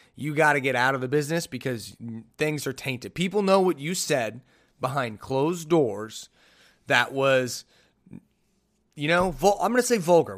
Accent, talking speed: American, 175 wpm